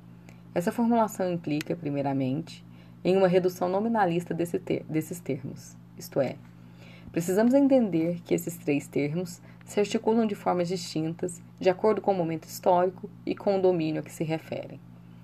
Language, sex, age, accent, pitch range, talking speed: Portuguese, female, 20-39, Brazilian, 135-190 Hz, 145 wpm